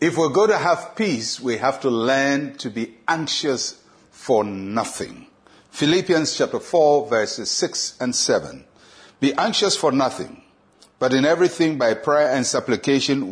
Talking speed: 150 wpm